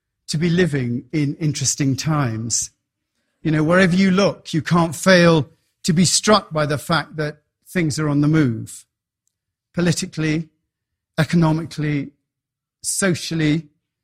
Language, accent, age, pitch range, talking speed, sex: English, British, 40-59, 120-180 Hz, 125 wpm, male